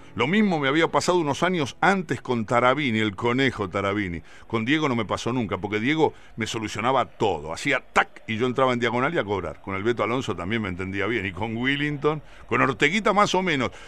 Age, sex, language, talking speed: 60-79, male, Spanish, 215 wpm